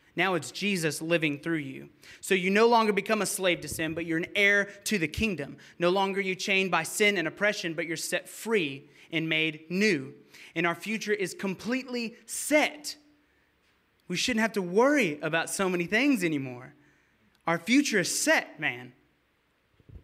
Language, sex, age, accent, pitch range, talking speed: English, male, 20-39, American, 165-210 Hz, 175 wpm